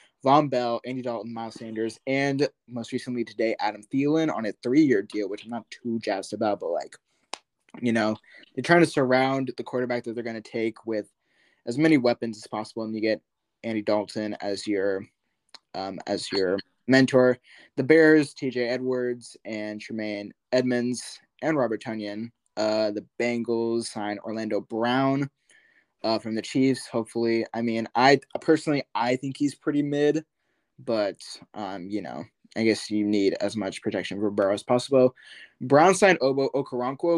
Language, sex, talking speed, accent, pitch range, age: English, male, 165 wpm, American, 110-135 Hz, 20-39